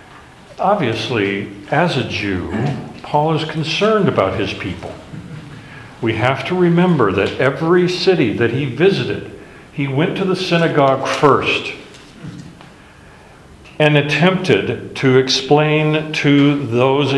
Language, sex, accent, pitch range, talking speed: English, male, American, 110-150 Hz, 110 wpm